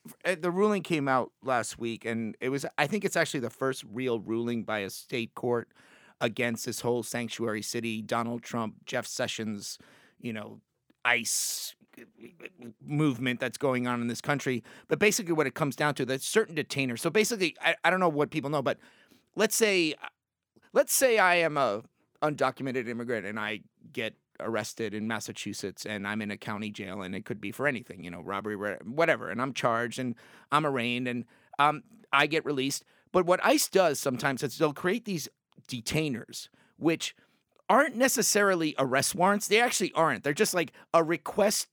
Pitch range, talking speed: 120-165 Hz, 180 wpm